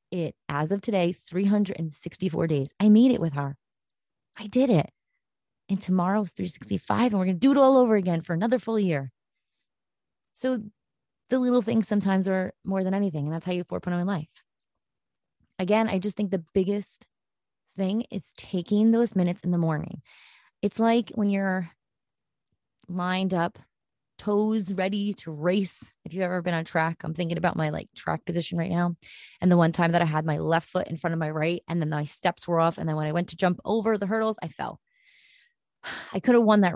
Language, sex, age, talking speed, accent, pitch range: English, female, 20-39, 200 wpm, American, 165-210 Hz